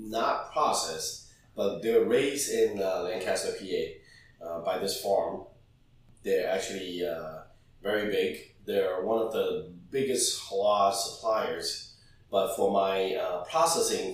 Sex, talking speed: male, 125 wpm